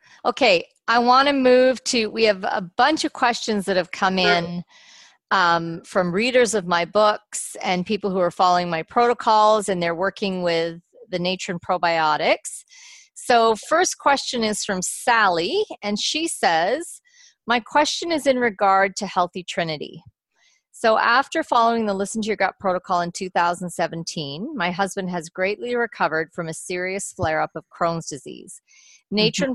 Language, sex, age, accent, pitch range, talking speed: English, female, 40-59, American, 175-235 Hz, 160 wpm